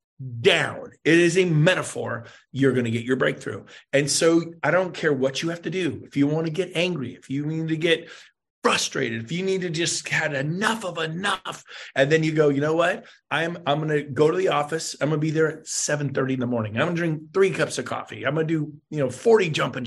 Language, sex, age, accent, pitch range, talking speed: English, male, 30-49, American, 145-195 Hz, 245 wpm